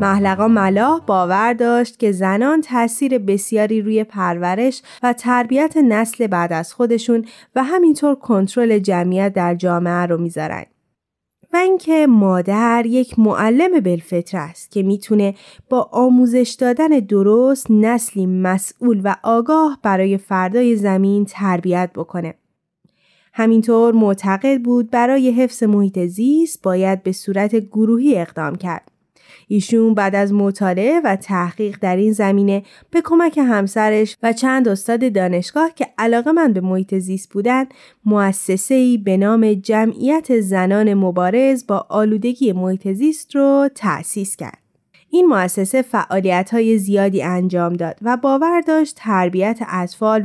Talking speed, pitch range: 130 wpm, 190-250 Hz